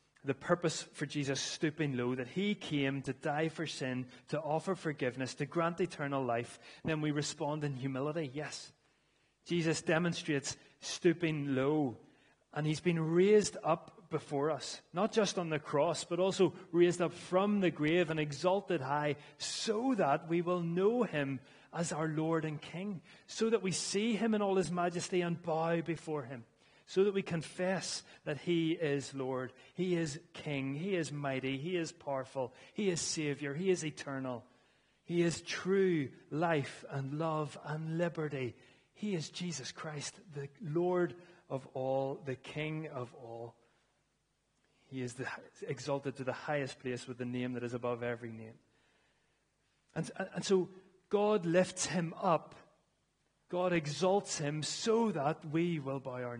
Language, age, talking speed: English, 30-49, 160 wpm